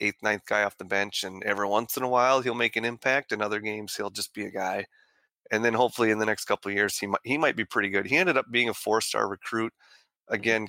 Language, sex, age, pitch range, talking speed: English, male, 30-49, 100-120 Hz, 270 wpm